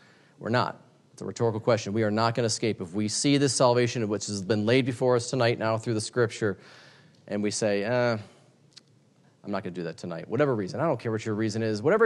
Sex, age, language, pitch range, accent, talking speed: male, 30-49, English, 115-150 Hz, American, 250 wpm